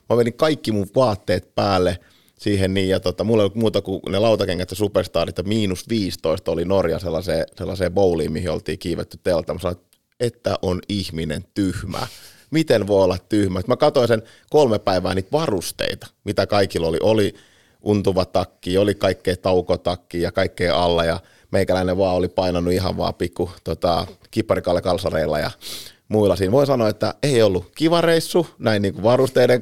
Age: 30-49